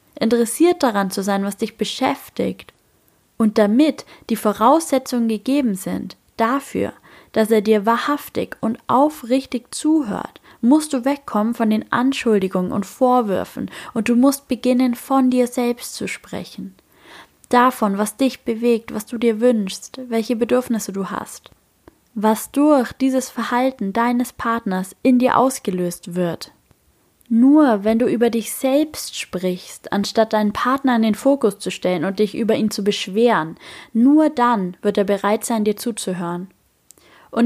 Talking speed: 145 wpm